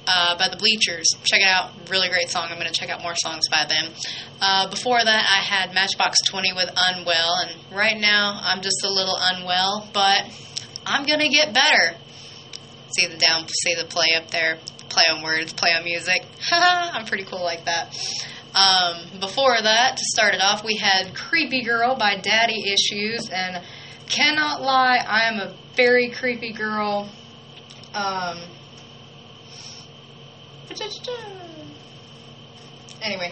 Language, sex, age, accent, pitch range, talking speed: English, female, 20-39, American, 170-230 Hz, 155 wpm